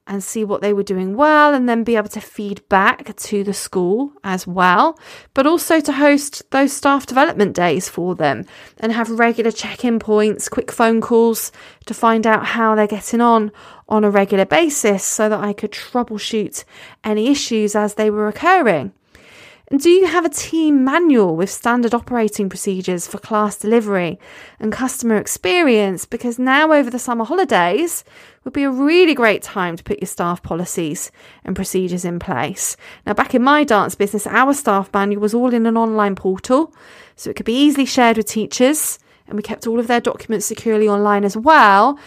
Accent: British